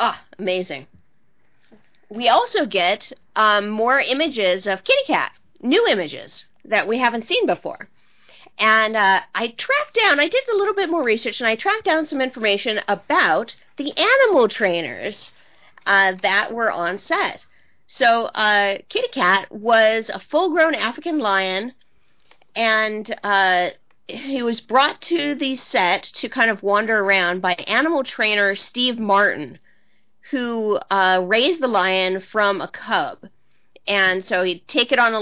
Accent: American